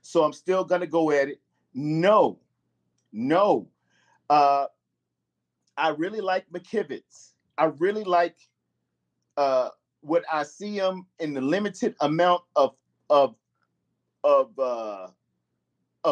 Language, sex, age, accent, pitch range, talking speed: English, male, 40-59, American, 140-200 Hz, 110 wpm